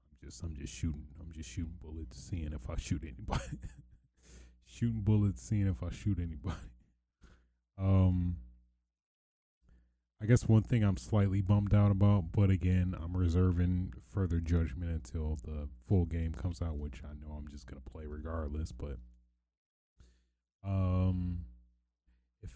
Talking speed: 140 wpm